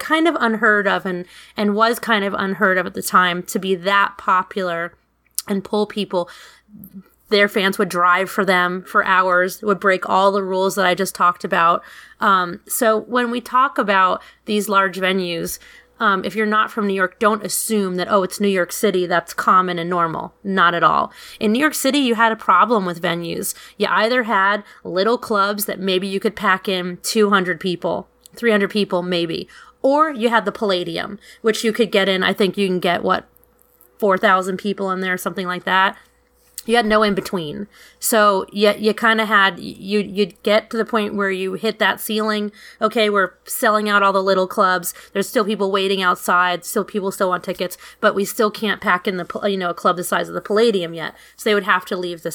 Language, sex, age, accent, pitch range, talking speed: English, female, 30-49, American, 185-215 Hz, 210 wpm